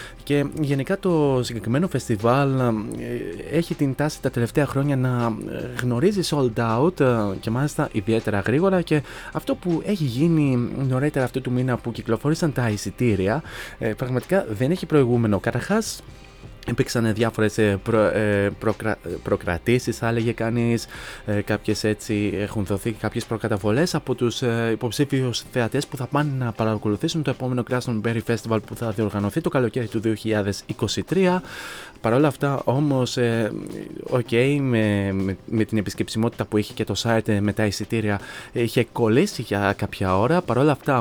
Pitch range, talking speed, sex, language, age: 110-135 Hz, 140 wpm, male, Greek, 20-39